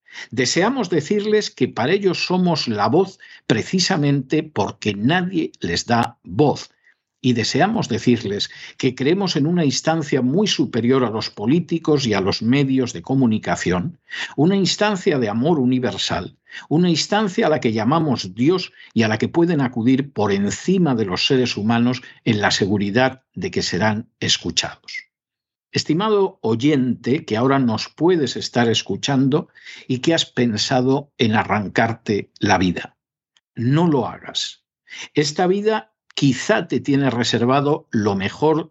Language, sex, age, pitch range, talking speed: Spanish, male, 60-79, 115-160 Hz, 140 wpm